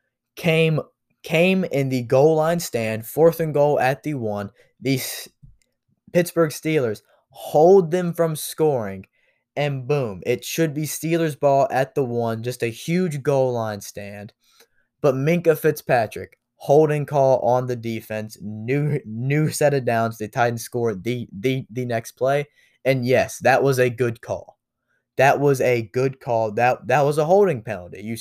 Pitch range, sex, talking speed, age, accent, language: 120-155 Hz, male, 160 wpm, 20-39, American, English